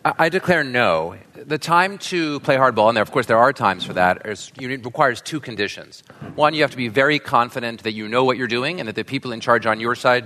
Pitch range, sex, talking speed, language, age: 115-145 Hz, male, 240 wpm, English, 30-49